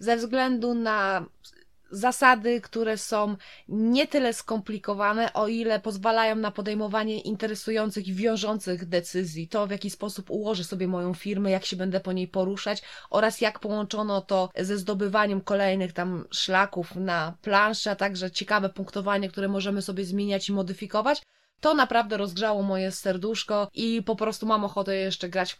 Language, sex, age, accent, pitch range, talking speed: Polish, female, 20-39, native, 195-230 Hz, 155 wpm